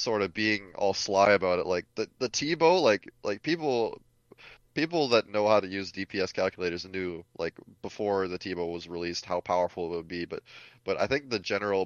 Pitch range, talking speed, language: 90-105 Hz, 200 wpm, English